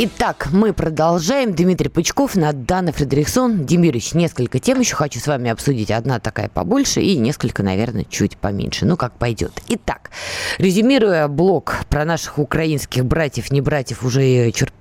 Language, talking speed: Russian, 155 wpm